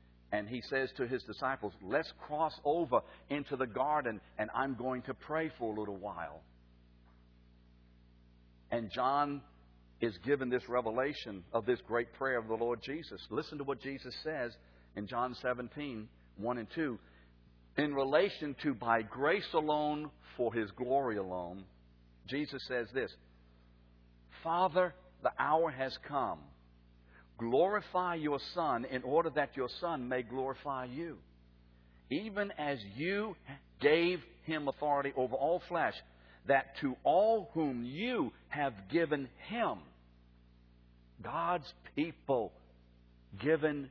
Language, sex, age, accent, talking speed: English, male, 60-79, American, 130 wpm